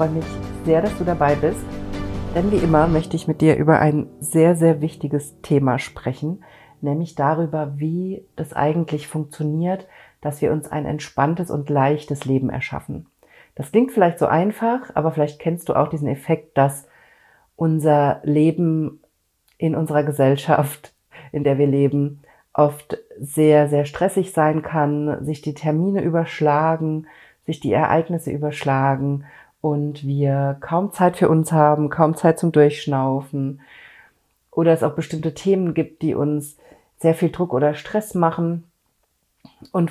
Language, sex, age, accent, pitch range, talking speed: German, female, 50-69, German, 145-165 Hz, 150 wpm